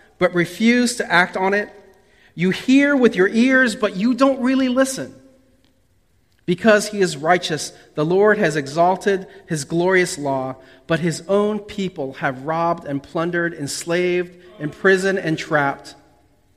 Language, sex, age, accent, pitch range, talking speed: English, male, 40-59, American, 145-200 Hz, 140 wpm